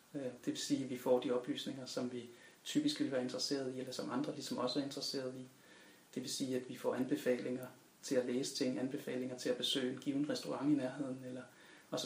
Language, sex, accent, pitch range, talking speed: Danish, male, native, 125-165 Hz, 220 wpm